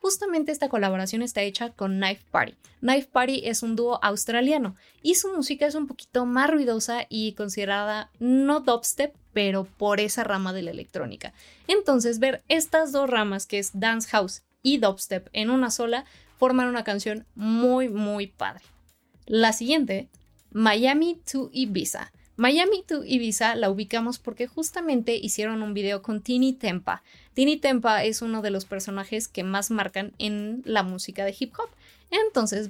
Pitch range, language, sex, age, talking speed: 200-260 Hz, Spanish, female, 20-39, 160 wpm